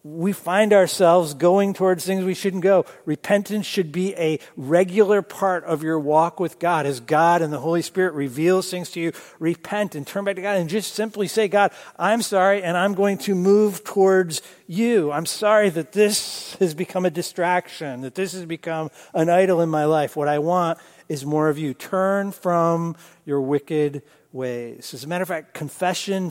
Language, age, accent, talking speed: English, 50-69, American, 195 wpm